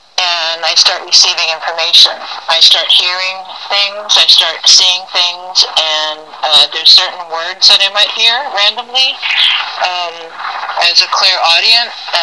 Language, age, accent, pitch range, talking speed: English, 30-49, American, 165-195 Hz, 130 wpm